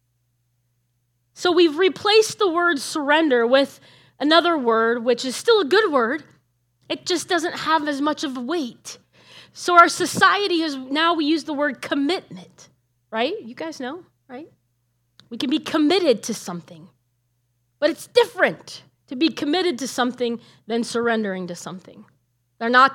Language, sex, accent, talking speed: English, female, American, 155 wpm